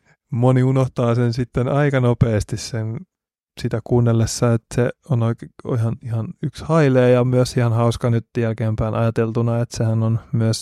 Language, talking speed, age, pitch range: Finnish, 155 wpm, 20-39, 105-120 Hz